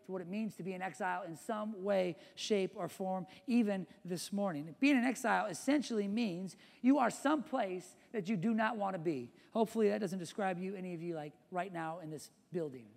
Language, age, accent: English, 40-59, American